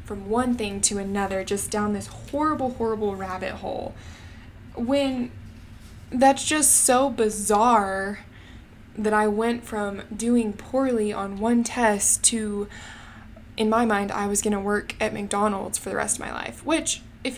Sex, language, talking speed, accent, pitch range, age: female, English, 155 wpm, American, 200-235 Hz, 20-39